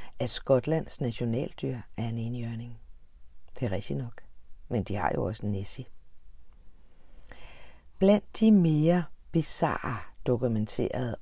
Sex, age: female, 50-69